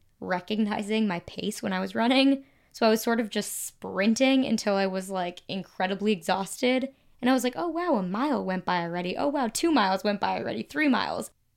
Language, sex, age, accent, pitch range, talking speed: English, female, 20-39, American, 180-225 Hz, 205 wpm